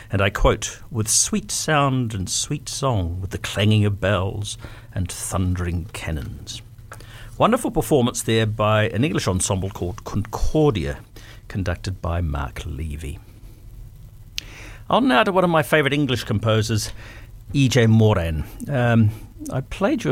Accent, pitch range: British, 105-120 Hz